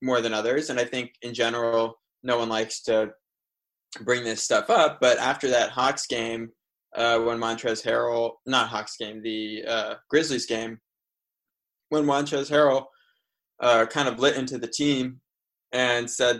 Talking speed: 160 wpm